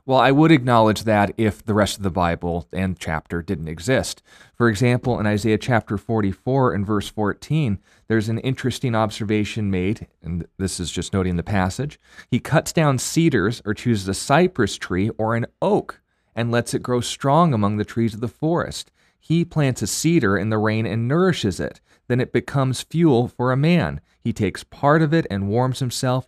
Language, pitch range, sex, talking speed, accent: English, 95-125 Hz, male, 190 wpm, American